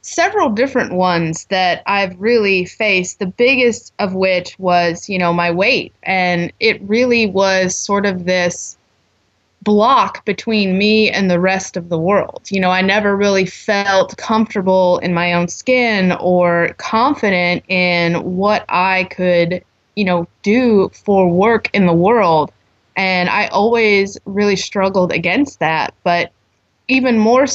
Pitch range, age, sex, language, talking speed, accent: 175-210 Hz, 20-39, female, English, 145 wpm, American